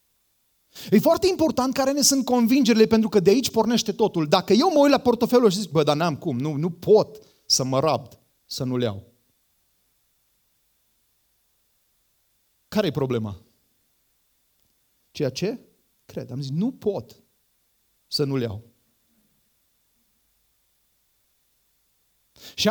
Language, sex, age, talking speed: Romanian, male, 30-49, 130 wpm